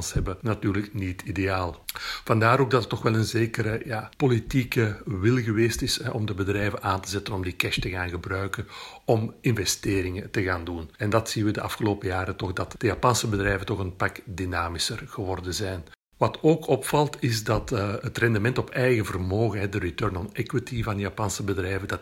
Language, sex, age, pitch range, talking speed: Dutch, male, 60-79, 95-115 Hz, 190 wpm